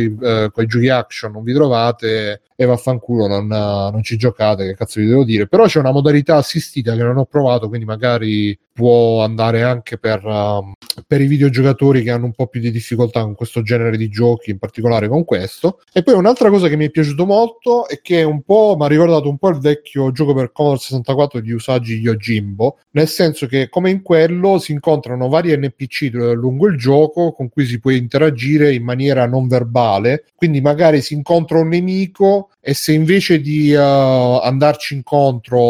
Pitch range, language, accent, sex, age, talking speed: 115-150 Hz, Italian, native, male, 30-49, 195 wpm